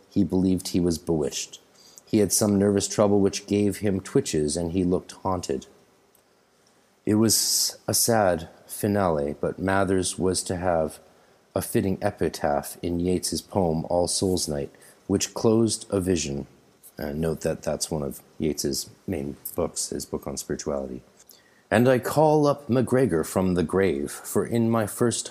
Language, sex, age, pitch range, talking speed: English, male, 40-59, 85-105 Hz, 155 wpm